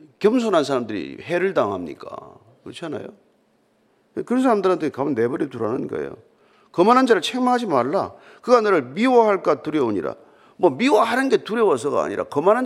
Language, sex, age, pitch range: Korean, male, 40-59, 195-285 Hz